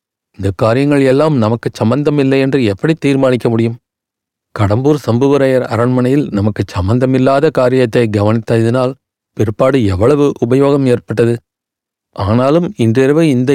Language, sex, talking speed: Tamil, male, 100 wpm